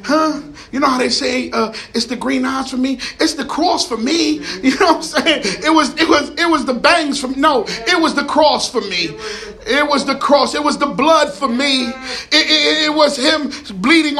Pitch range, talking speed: 200-280 Hz, 250 wpm